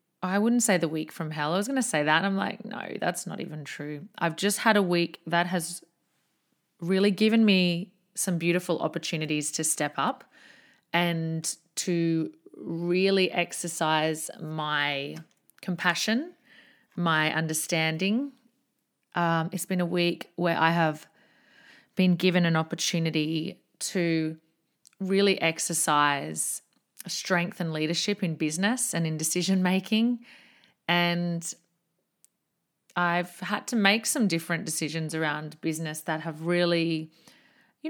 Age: 30-49